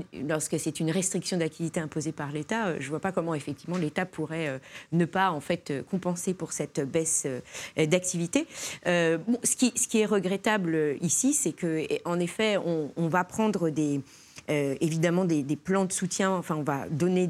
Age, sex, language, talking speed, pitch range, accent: 30-49, female, French, 185 wpm, 160-195 Hz, French